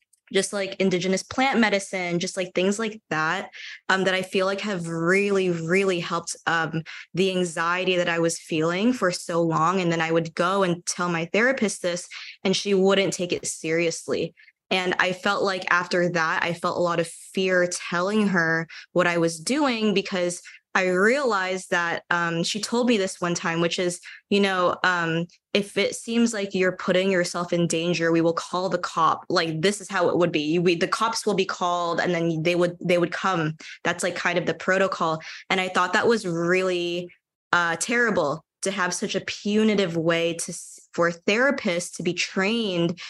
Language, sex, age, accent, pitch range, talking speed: English, female, 20-39, American, 170-195 Hz, 190 wpm